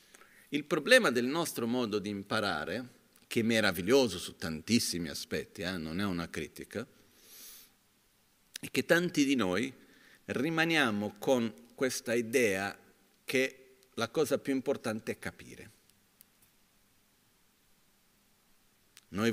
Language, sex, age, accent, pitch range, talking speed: Italian, male, 50-69, native, 95-140 Hz, 110 wpm